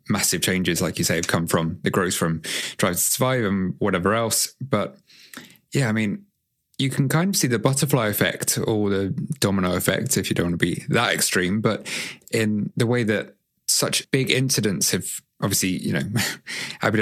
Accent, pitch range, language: British, 95-120 Hz, English